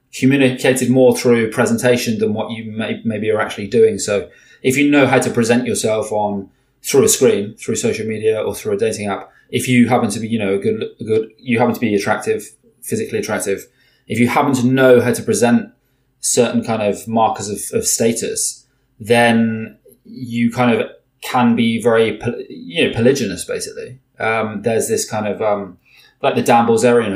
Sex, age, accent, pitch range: male, 20-39, British, 110-140 Hz